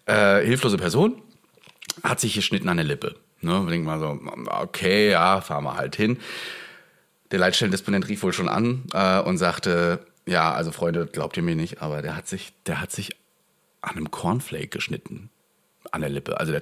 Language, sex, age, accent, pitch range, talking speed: German, male, 40-59, German, 95-140 Hz, 190 wpm